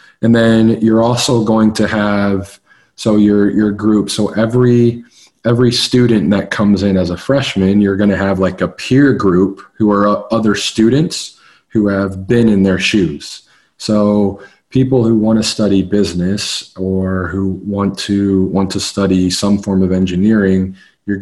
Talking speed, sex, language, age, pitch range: 165 wpm, male, English, 40-59, 95-110 Hz